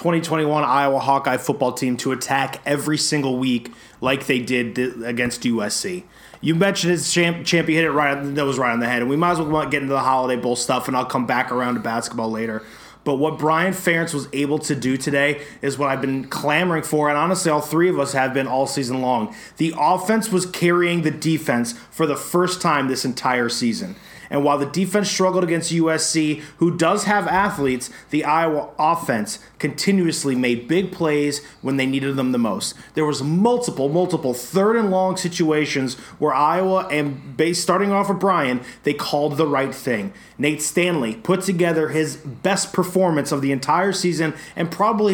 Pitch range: 135-170 Hz